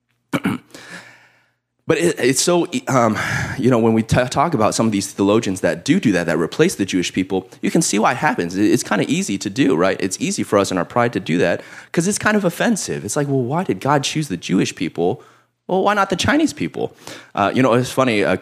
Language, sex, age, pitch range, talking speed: English, male, 20-39, 105-165 Hz, 240 wpm